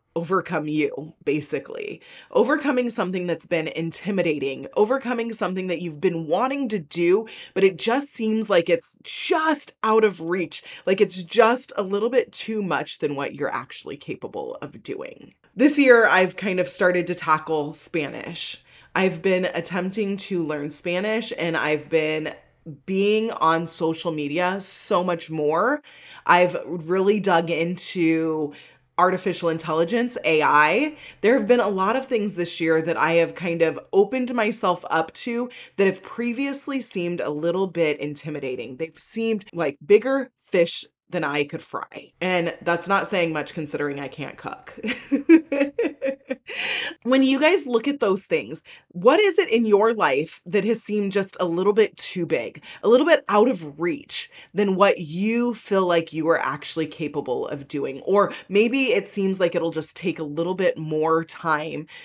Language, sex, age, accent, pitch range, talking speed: English, female, 20-39, American, 160-225 Hz, 165 wpm